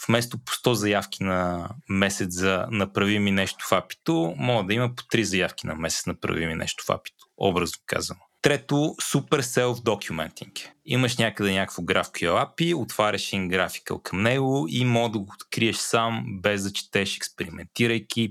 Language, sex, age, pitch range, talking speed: Bulgarian, male, 30-49, 100-125 Hz, 170 wpm